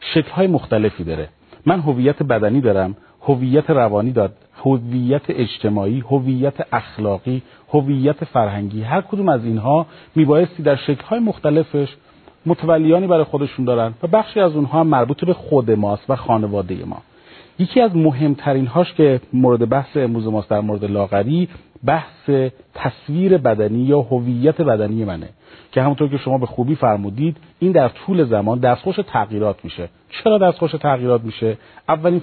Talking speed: 145 wpm